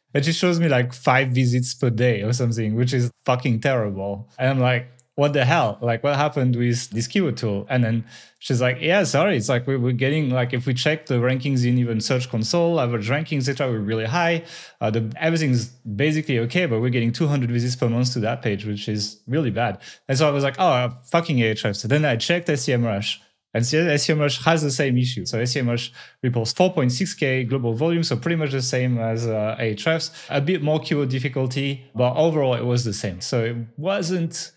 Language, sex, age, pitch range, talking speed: English, male, 20-39, 120-150 Hz, 215 wpm